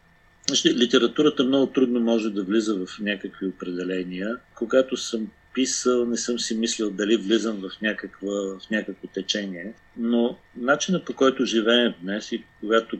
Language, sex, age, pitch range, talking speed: Bulgarian, male, 50-69, 95-120 Hz, 145 wpm